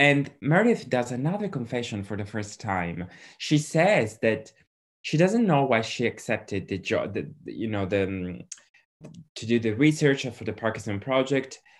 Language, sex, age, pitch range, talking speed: English, male, 20-39, 105-140 Hz, 160 wpm